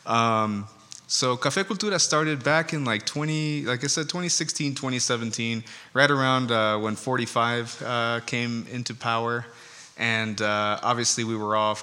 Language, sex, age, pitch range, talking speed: English, male, 20-39, 110-130 Hz, 145 wpm